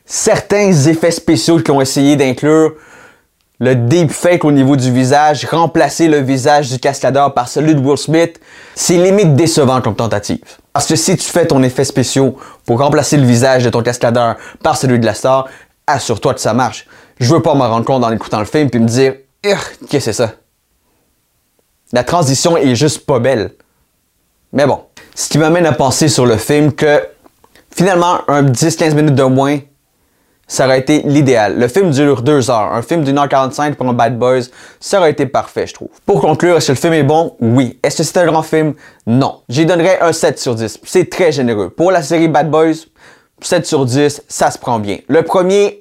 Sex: male